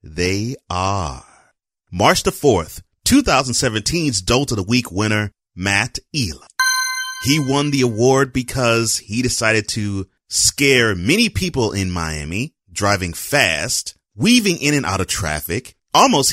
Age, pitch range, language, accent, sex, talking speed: 30-49, 95-140 Hz, English, American, male, 130 wpm